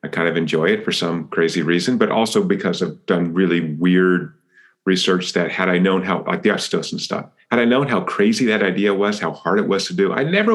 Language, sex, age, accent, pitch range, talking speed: English, male, 40-59, American, 90-100 Hz, 235 wpm